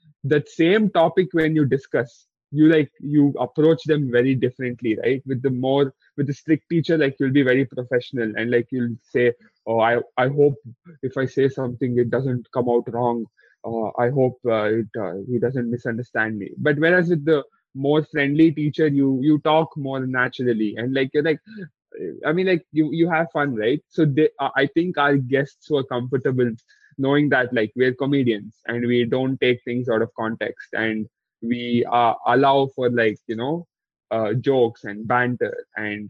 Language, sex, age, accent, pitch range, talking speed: English, male, 20-39, Indian, 120-150 Hz, 185 wpm